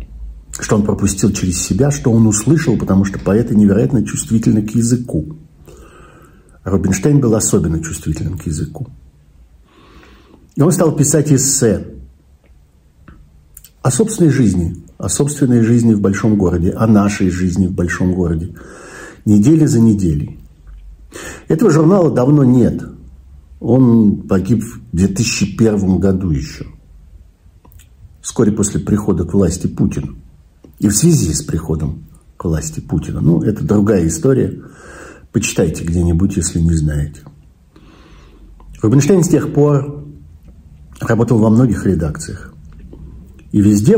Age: 50-69